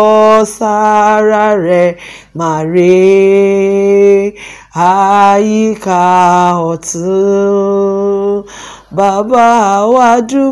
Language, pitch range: English, 185-265 Hz